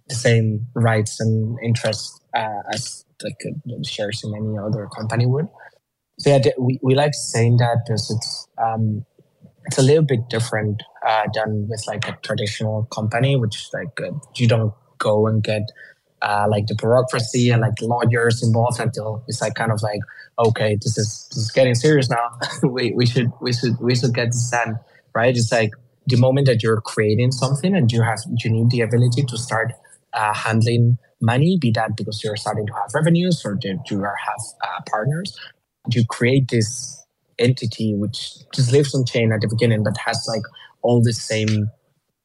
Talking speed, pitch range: 190 wpm, 110-130 Hz